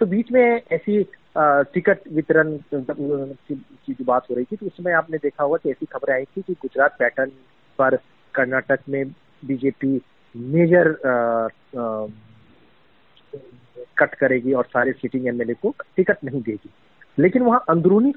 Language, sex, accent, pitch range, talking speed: Hindi, male, native, 125-165 Hz, 140 wpm